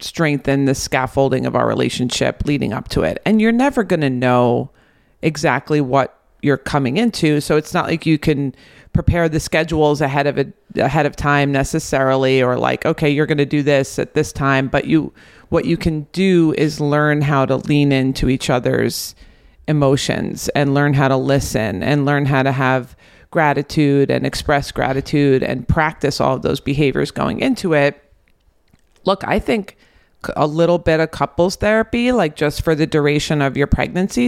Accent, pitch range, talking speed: American, 140-165 Hz, 180 wpm